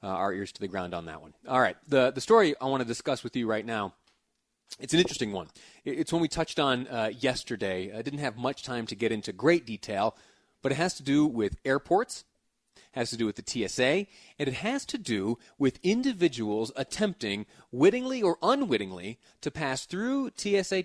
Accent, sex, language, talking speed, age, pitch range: American, male, English, 205 wpm, 30-49, 110-155 Hz